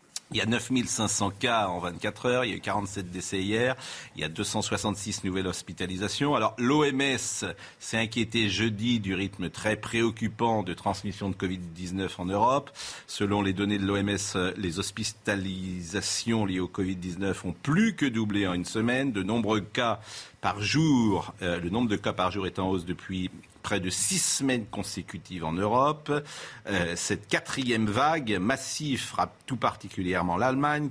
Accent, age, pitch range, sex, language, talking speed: French, 50-69, 95-115 Hz, male, French, 165 wpm